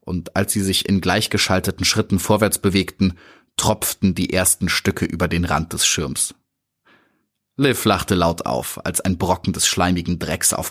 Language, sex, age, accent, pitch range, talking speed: German, male, 30-49, German, 90-110 Hz, 165 wpm